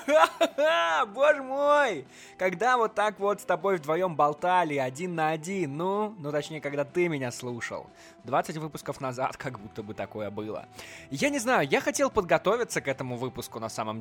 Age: 20-39